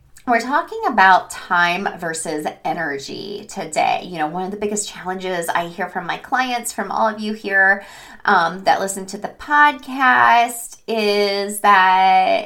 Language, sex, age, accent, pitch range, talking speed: English, female, 20-39, American, 190-250 Hz, 155 wpm